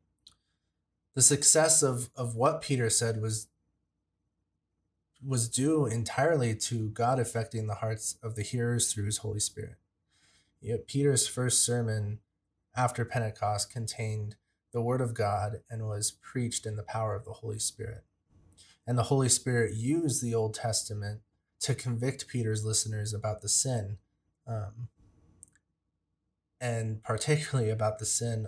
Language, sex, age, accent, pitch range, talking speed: English, male, 30-49, American, 105-125 Hz, 135 wpm